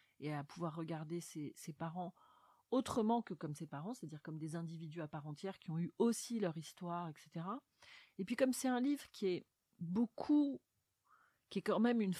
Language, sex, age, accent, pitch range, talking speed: French, female, 30-49, French, 160-215 Hz, 195 wpm